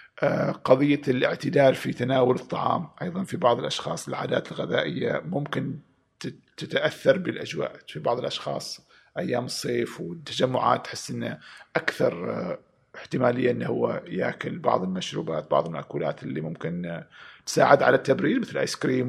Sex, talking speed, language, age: male, 125 wpm, Arabic, 50-69